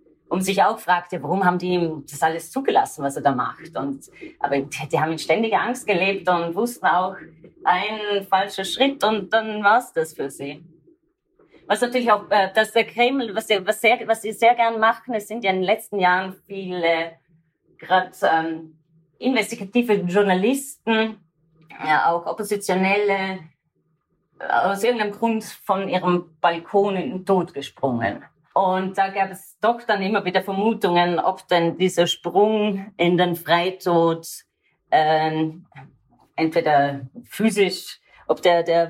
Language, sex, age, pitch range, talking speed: German, female, 30-49, 160-205 Hz, 150 wpm